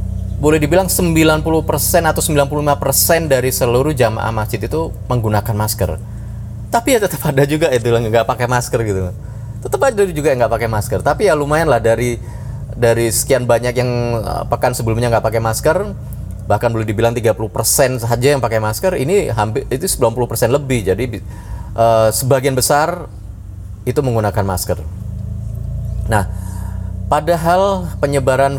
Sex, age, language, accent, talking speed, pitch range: male, 30-49, Indonesian, native, 140 wpm, 100-125 Hz